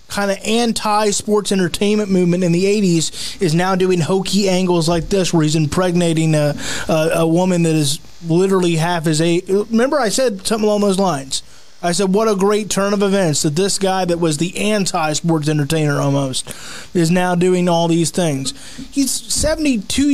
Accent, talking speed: American, 175 wpm